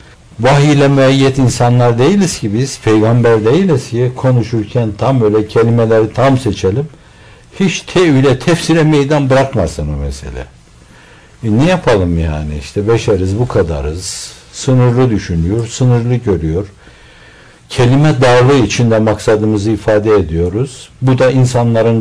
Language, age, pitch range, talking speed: Turkish, 60-79, 90-120 Hz, 115 wpm